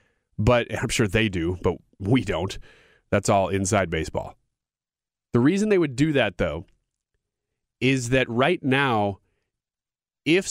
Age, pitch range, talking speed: 30-49, 105-135 Hz, 135 wpm